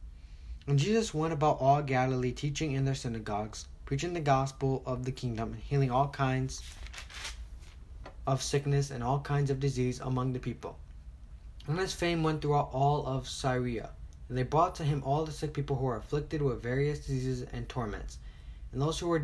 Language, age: English, 10-29